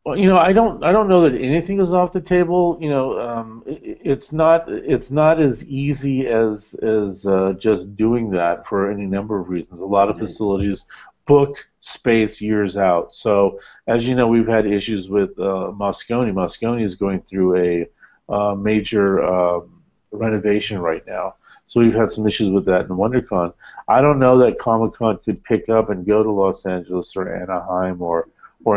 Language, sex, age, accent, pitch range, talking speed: English, male, 40-59, American, 100-125 Hz, 190 wpm